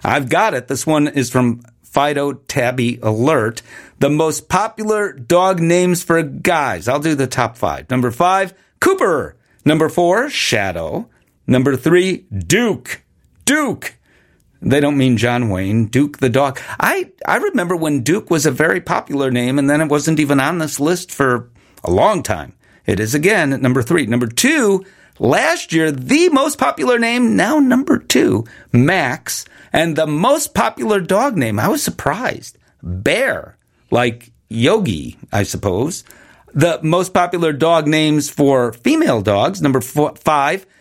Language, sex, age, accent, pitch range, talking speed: English, male, 50-69, American, 135-190 Hz, 155 wpm